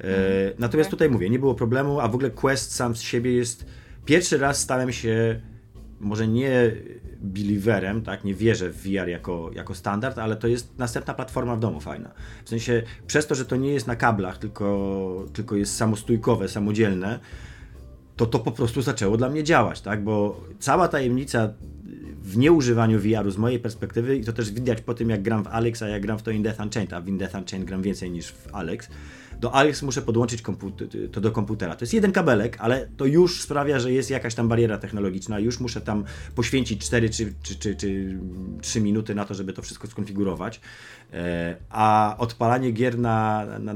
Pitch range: 100-120 Hz